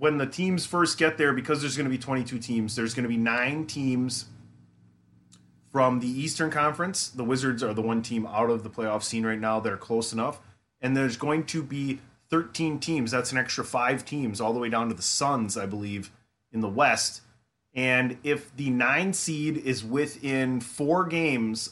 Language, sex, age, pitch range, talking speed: English, male, 30-49, 110-140 Hz, 200 wpm